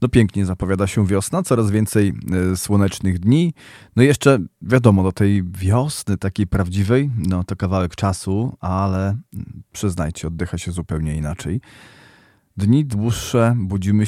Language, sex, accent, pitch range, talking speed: Polish, male, native, 95-110 Hz, 135 wpm